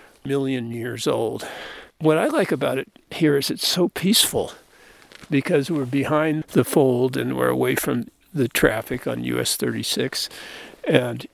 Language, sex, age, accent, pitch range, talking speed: English, male, 50-69, American, 125-150 Hz, 150 wpm